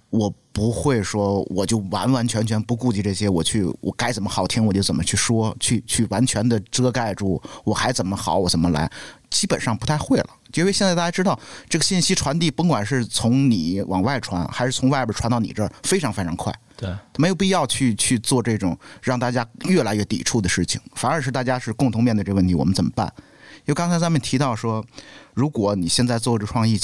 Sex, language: male, Chinese